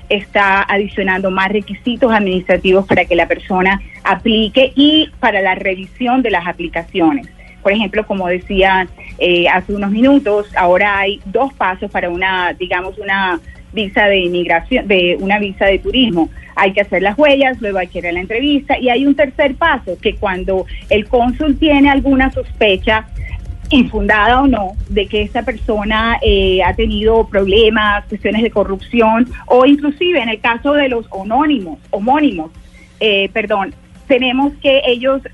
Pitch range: 190-255 Hz